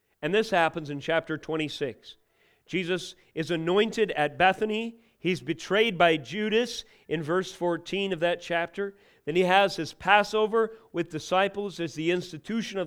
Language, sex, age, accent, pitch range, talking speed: English, male, 40-59, American, 155-200 Hz, 150 wpm